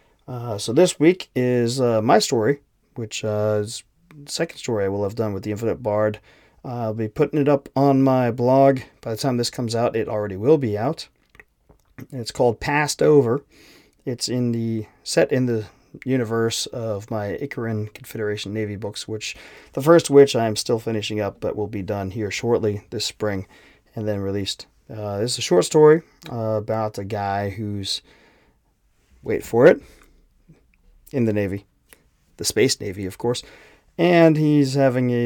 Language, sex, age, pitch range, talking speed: English, male, 30-49, 105-135 Hz, 180 wpm